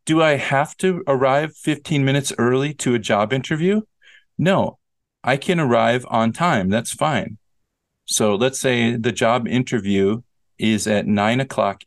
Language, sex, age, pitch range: English, male, 40-59, 110-155 Hz